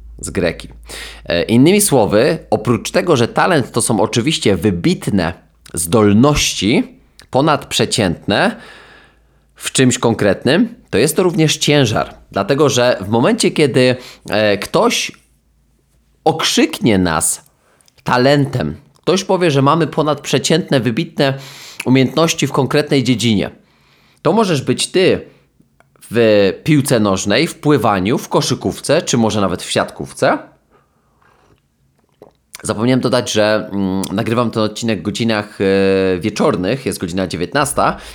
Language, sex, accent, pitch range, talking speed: Polish, male, native, 95-135 Hz, 110 wpm